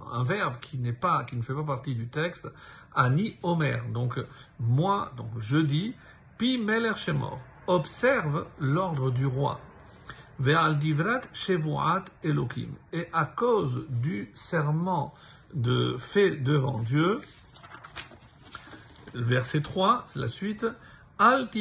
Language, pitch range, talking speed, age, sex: French, 135-175 Hz, 115 wpm, 50-69, male